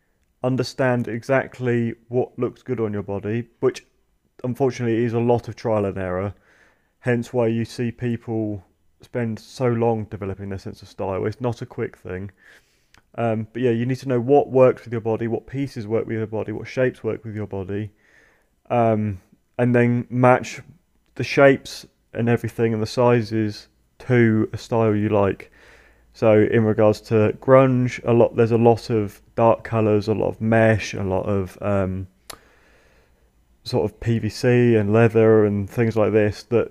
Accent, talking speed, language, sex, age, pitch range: British, 175 wpm, English, male, 30-49, 105-120 Hz